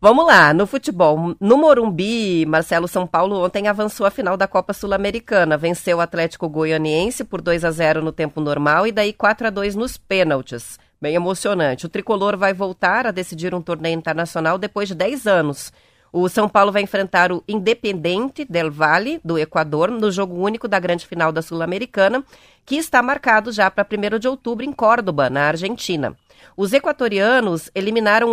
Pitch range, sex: 175-230 Hz, female